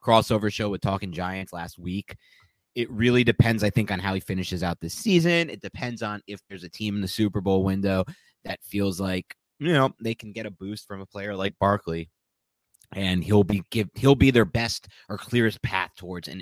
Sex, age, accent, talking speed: male, 30-49, American, 215 wpm